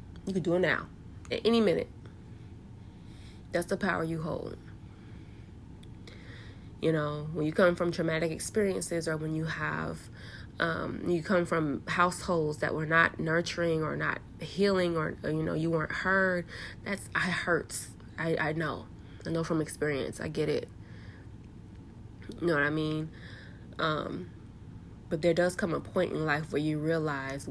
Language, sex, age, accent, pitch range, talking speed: English, female, 20-39, American, 115-165 Hz, 160 wpm